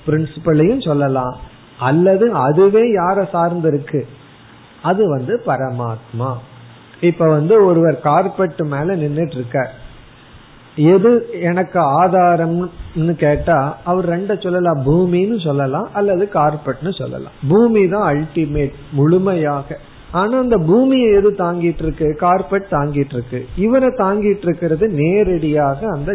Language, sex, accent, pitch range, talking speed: Tamil, male, native, 130-180 Hz, 90 wpm